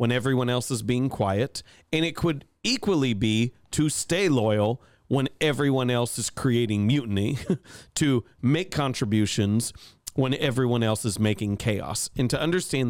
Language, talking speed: English, 150 wpm